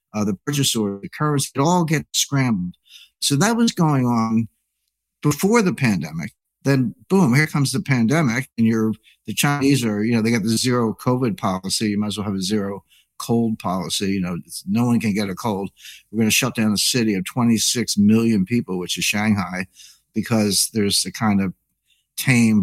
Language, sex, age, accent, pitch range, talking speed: English, male, 60-79, American, 100-130 Hz, 200 wpm